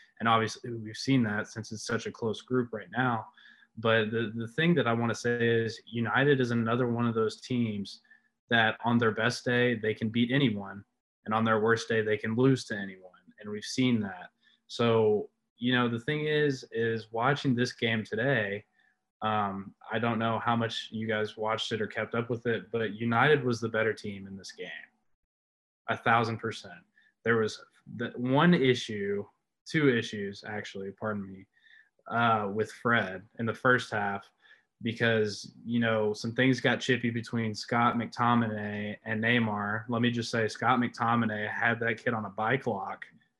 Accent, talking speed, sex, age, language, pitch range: American, 185 wpm, male, 20-39, English, 110-120 Hz